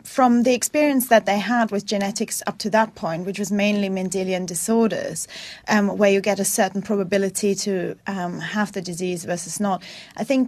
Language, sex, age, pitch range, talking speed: English, female, 30-49, 185-220 Hz, 190 wpm